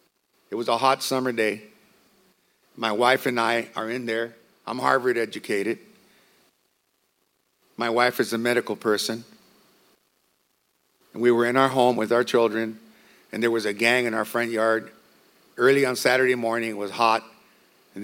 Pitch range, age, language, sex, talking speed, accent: 105-125 Hz, 50-69, English, male, 160 wpm, American